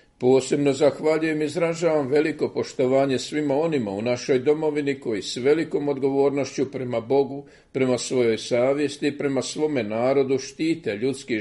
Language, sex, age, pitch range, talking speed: Croatian, male, 50-69, 125-150 Hz, 135 wpm